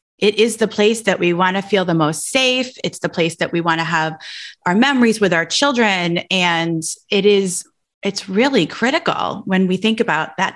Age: 30-49